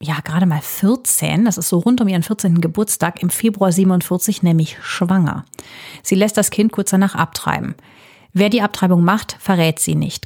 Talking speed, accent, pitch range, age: 180 wpm, German, 165-210 Hz, 30-49